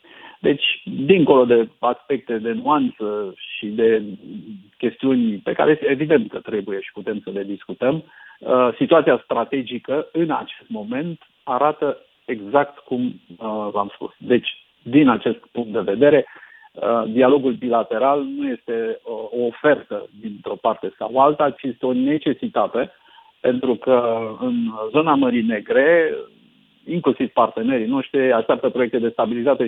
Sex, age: male, 50-69